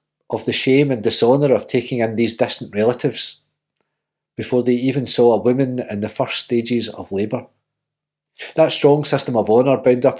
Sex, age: male, 40-59